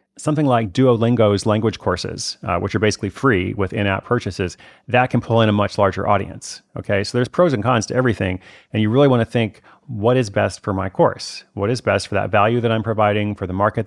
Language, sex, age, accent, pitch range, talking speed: English, male, 30-49, American, 100-125 Hz, 235 wpm